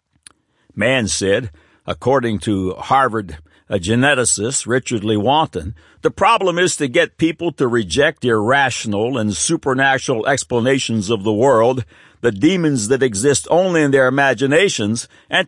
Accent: American